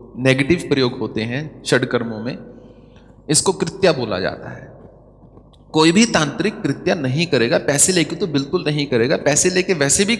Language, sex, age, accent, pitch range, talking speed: English, male, 30-49, Indian, 125-170 Hz, 160 wpm